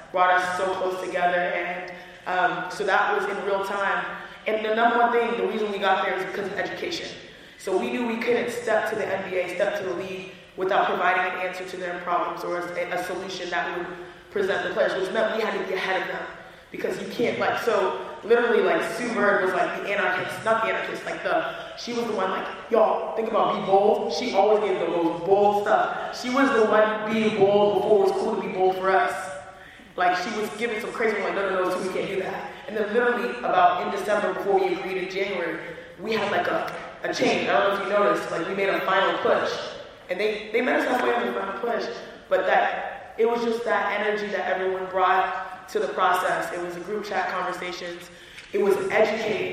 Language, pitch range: English, 185-210 Hz